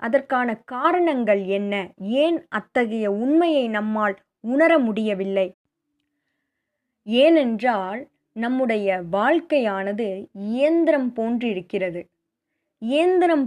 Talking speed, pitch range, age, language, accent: 65 wpm, 205-280 Hz, 20-39, Tamil, native